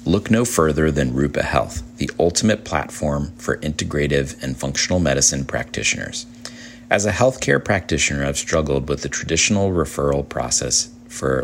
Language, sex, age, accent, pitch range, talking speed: English, male, 40-59, American, 70-95 Hz, 140 wpm